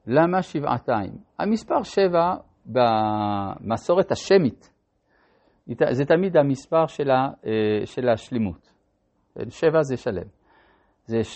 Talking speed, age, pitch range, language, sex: 80 wpm, 50-69, 115-170 Hz, Hebrew, male